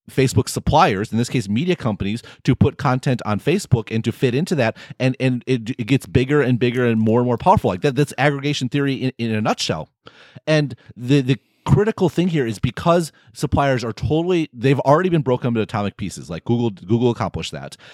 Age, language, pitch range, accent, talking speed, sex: 30-49, English, 115-145 Hz, American, 205 wpm, male